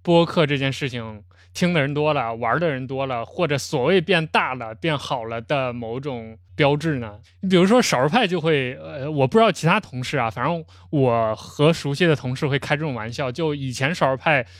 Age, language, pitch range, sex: 20-39, Chinese, 125-165 Hz, male